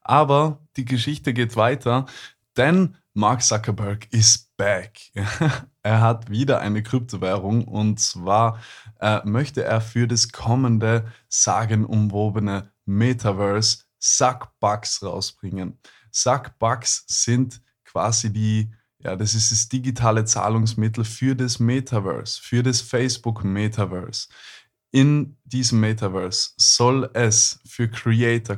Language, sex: German, male